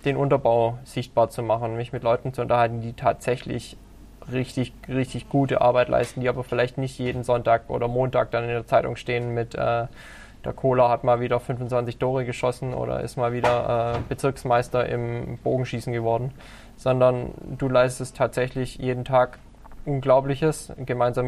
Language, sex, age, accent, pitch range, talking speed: German, male, 10-29, German, 120-135 Hz, 160 wpm